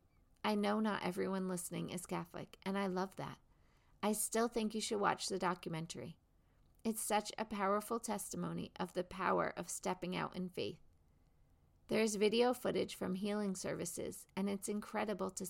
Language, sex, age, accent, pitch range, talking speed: English, female, 40-59, American, 175-215 Hz, 165 wpm